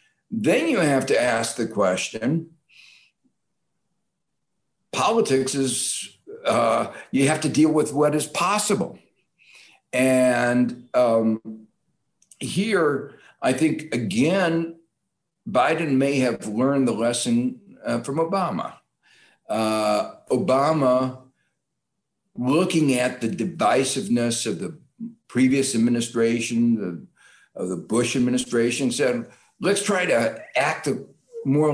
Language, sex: English, male